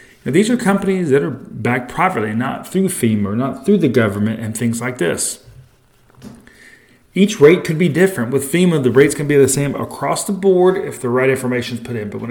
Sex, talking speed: male, 220 wpm